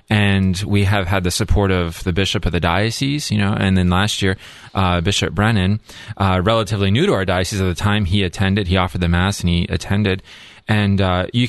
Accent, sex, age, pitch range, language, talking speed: American, male, 30-49, 95-115 Hz, English, 220 wpm